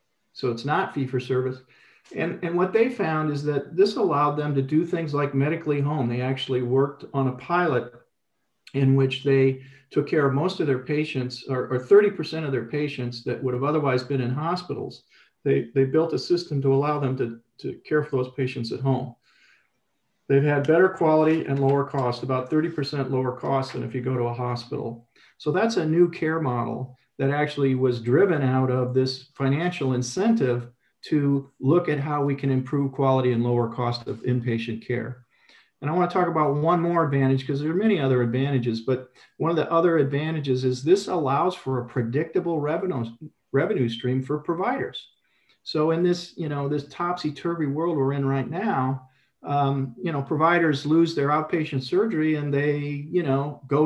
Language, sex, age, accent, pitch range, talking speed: English, male, 50-69, American, 130-155 Hz, 190 wpm